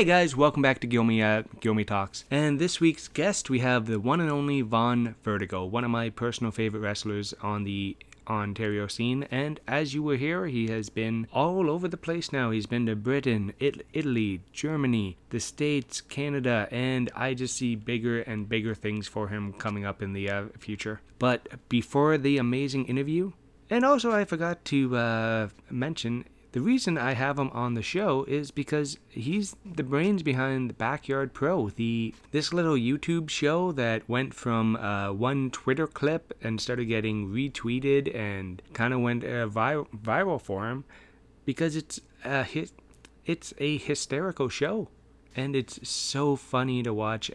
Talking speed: 175 wpm